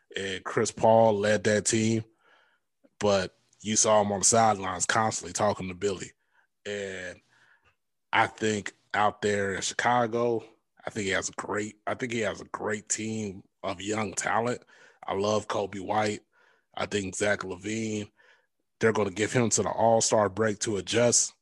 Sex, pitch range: male, 100-110 Hz